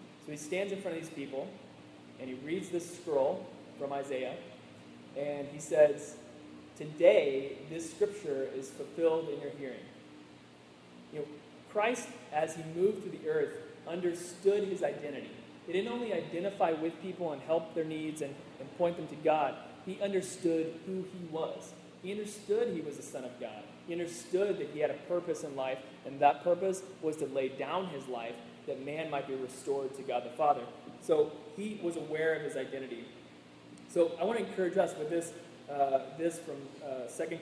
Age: 20-39